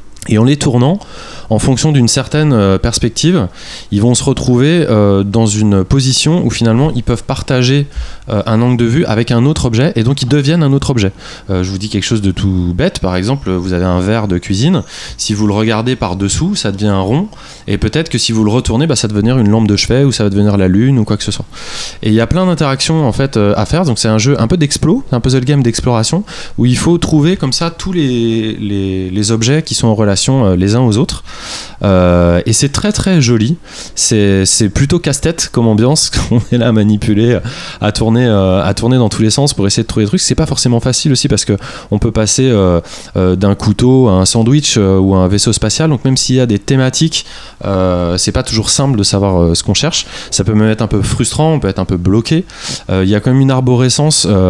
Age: 20-39